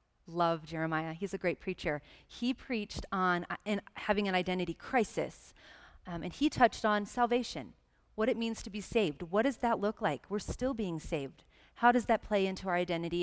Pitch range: 180-230 Hz